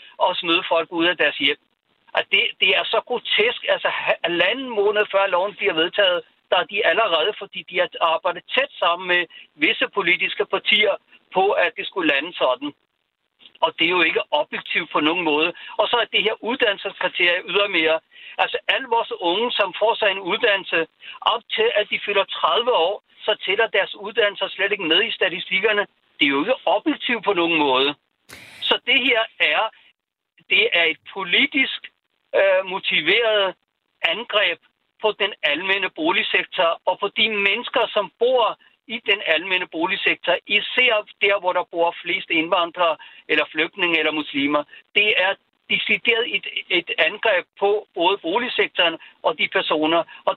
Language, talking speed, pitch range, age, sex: Danish, 160 wpm, 170-230 Hz, 60-79, male